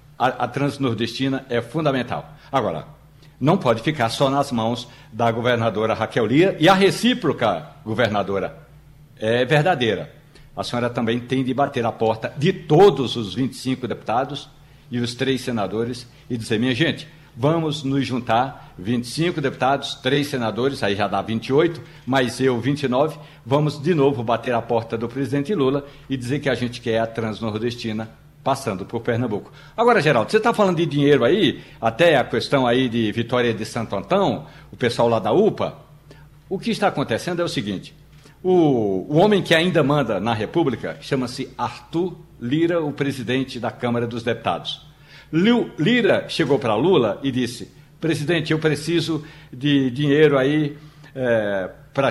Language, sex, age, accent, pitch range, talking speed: Portuguese, male, 60-79, Brazilian, 120-150 Hz, 155 wpm